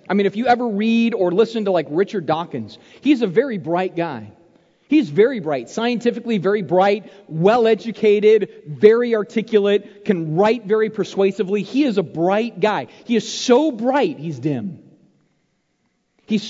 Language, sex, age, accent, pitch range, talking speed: English, male, 40-59, American, 150-245 Hz, 155 wpm